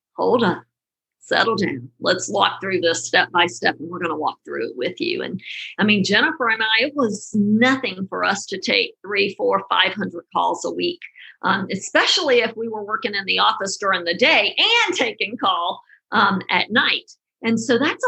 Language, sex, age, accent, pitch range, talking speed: English, female, 50-69, American, 200-275 Hz, 200 wpm